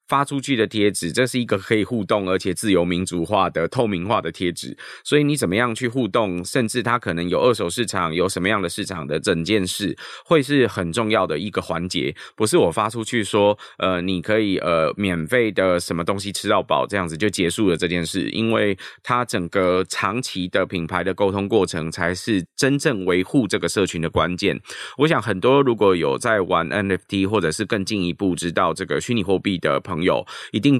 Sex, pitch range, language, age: male, 90-115 Hz, Chinese, 20-39